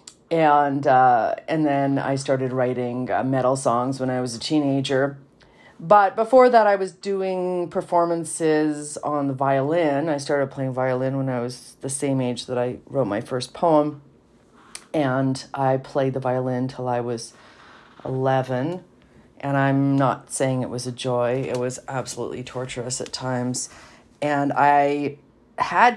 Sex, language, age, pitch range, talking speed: female, English, 40-59, 125-145 Hz, 155 wpm